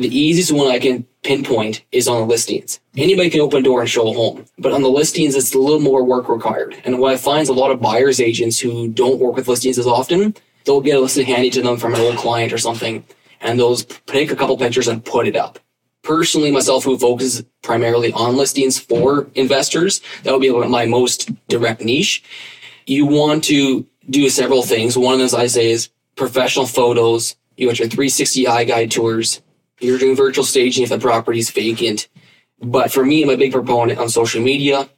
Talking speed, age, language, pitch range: 215 wpm, 20-39, English, 120-135 Hz